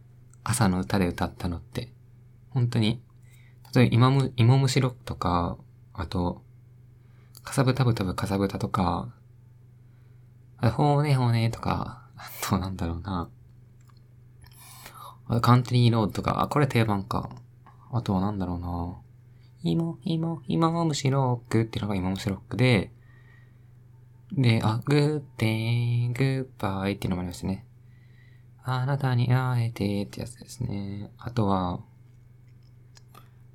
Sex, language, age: male, Japanese, 20-39